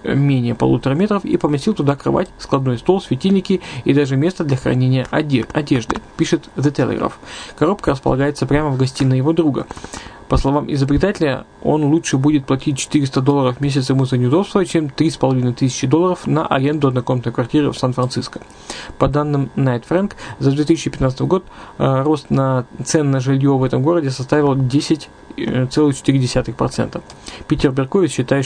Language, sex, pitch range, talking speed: Russian, male, 130-155 Hz, 150 wpm